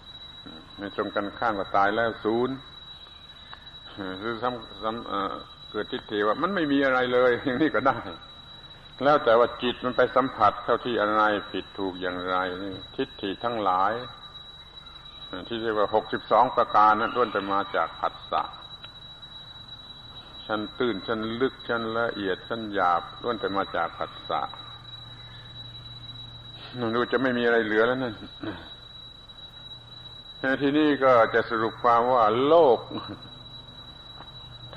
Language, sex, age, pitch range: Thai, male, 70-89, 105-135 Hz